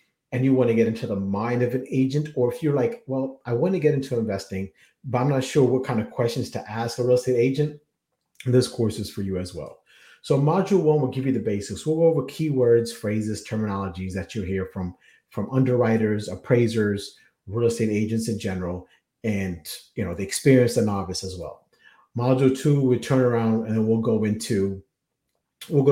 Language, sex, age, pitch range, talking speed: English, male, 30-49, 105-130 Hz, 205 wpm